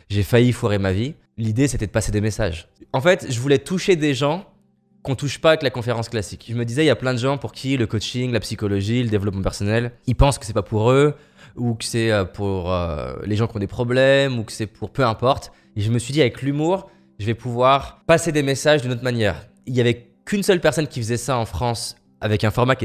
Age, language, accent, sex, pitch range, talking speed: 20-39, French, French, male, 105-135 Hz, 265 wpm